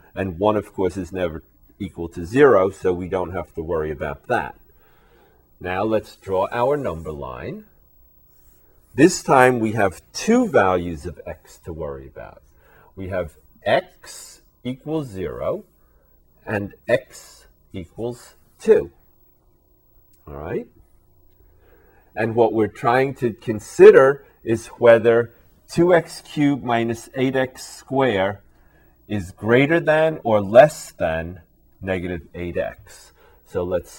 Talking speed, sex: 120 wpm, male